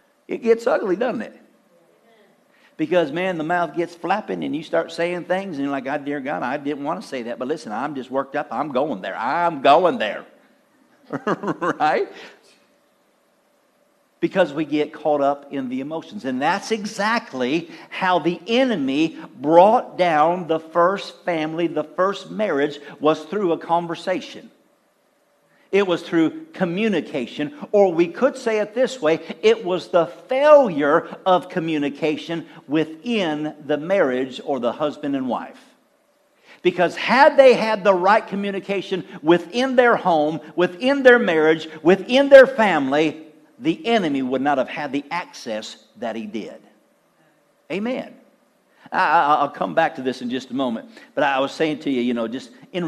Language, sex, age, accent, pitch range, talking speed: English, male, 50-69, American, 150-220 Hz, 160 wpm